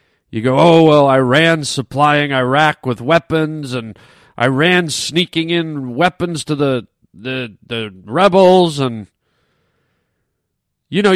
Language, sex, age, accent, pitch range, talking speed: English, male, 40-59, American, 130-195 Hz, 120 wpm